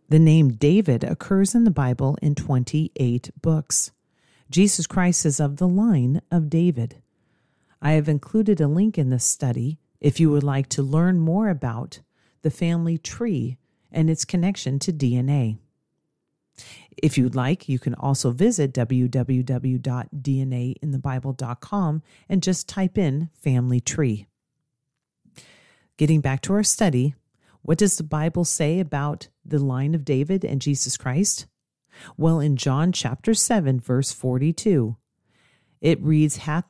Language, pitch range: English, 130-165 Hz